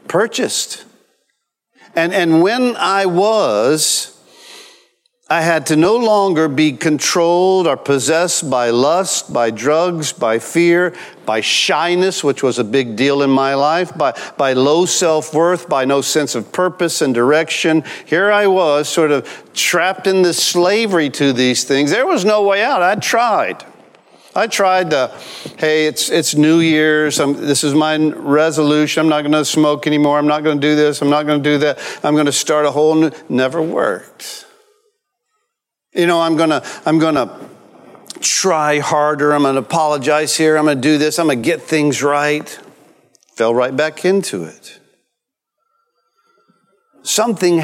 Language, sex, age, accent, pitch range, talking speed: English, male, 50-69, American, 145-185 Hz, 170 wpm